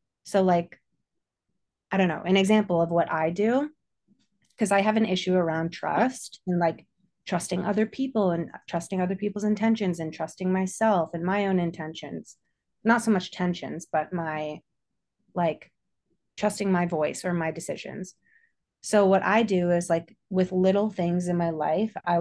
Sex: female